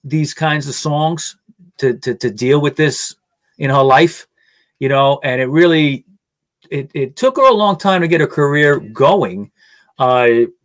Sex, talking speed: male, 175 wpm